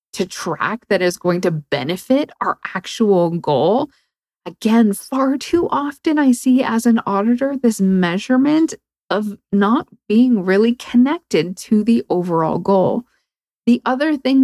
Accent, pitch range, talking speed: American, 175-230 Hz, 135 wpm